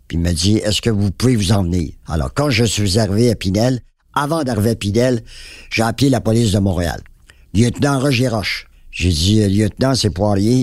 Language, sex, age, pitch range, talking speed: French, male, 60-79, 90-115 Hz, 210 wpm